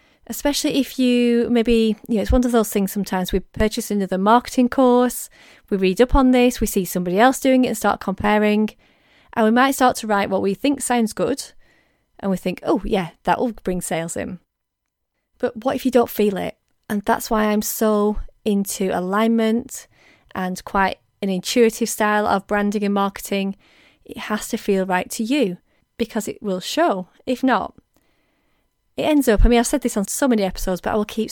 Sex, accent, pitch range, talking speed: female, British, 200-245 Hz, 200 wpm